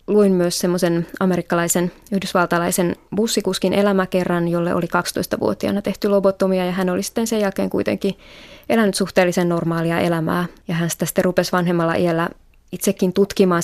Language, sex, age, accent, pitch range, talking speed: Finnish, female, 20-39, native, 170-190 Hz, 140 wpm